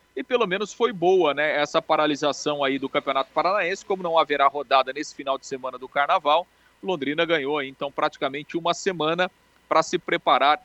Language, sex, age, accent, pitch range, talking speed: Portuguese, male, 40-59, Brazilian, 150-185 Hz, 175 wpm